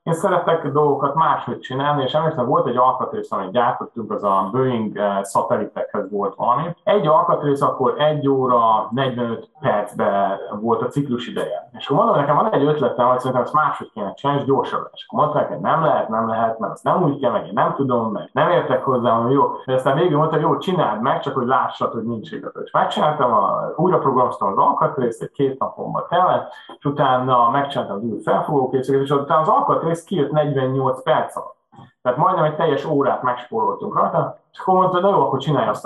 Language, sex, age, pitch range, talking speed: Hungarian, male, 30-49, 115-145 Hz, 185 wpm